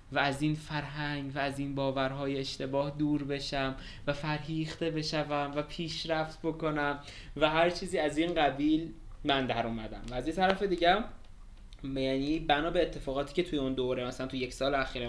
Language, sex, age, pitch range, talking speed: Persian, male, 20-39, 135-165 Hz, 170 wpm